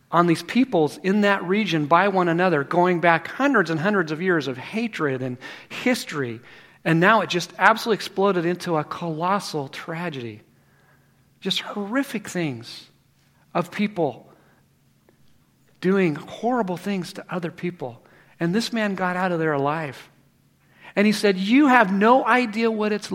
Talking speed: 150 wpm